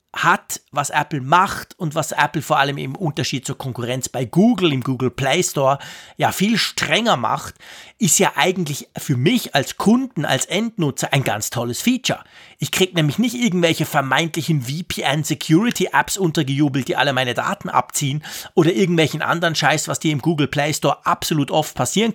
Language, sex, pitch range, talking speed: German, male, 140-185 Hz, 170 wpm